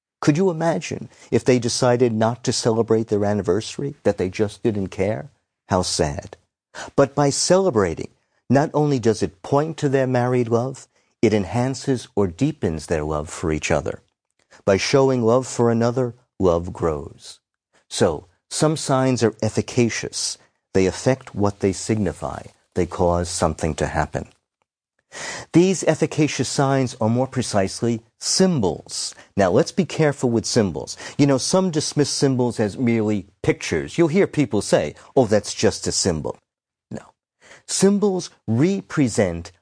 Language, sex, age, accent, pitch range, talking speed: English, male, 50-69, American, 105-145 Hz, 140 wpm